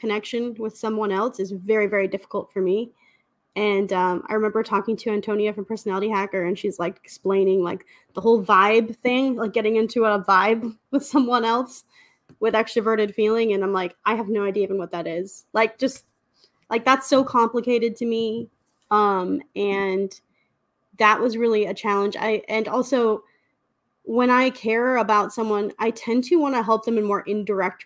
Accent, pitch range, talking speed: American, 195-235 Hz, 180 wpm